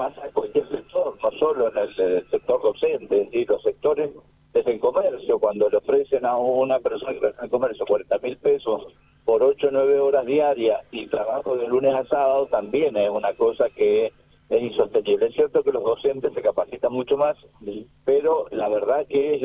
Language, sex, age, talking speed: Spanish, male, 50-69, 190 wpm